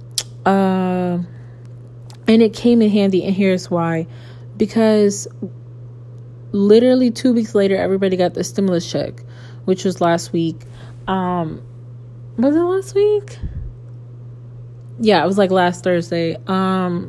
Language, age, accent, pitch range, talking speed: English, 20-39, American, 120-200 Hz, 125 wpm